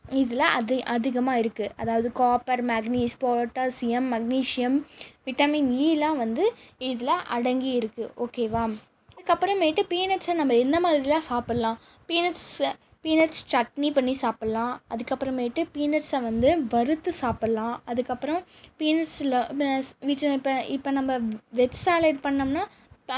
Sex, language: female, Tamil